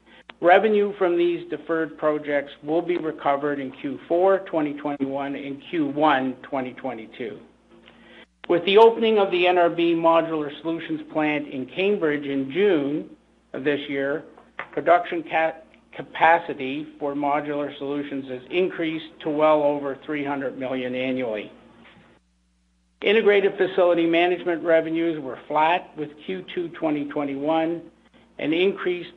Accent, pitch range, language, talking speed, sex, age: American, 140-175 Hz, English, 110 wpm, male, 50-69